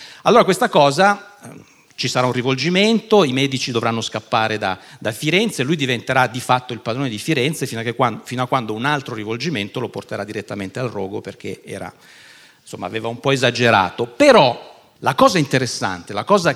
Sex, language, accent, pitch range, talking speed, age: male, Italian, native, 115-170 Hz, 180 wpm, 50-69